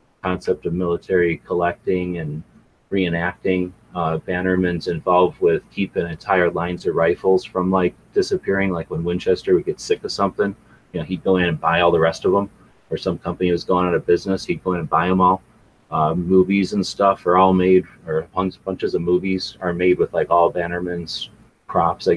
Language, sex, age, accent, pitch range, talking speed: English, male, 30-49, American, 85-95 Hz, 195 wpm